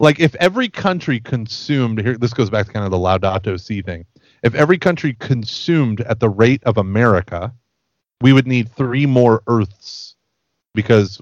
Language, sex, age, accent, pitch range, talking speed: English, male, 30-49, American, 105-130 Hz, 170 wpm